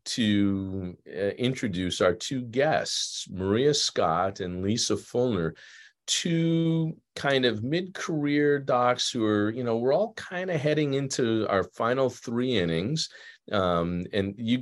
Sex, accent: male, American